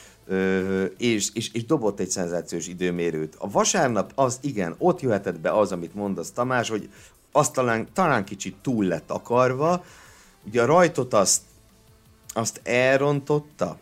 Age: 50-69